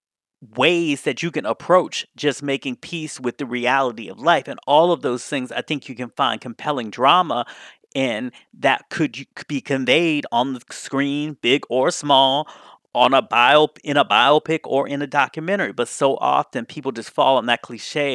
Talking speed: 180 wpm